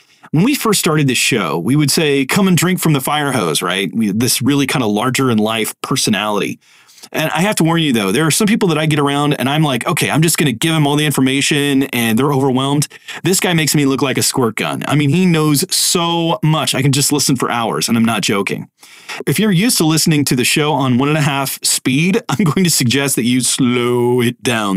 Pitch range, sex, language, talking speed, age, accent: 130-165 Hz, male, English, 255 wpm, 30-49, American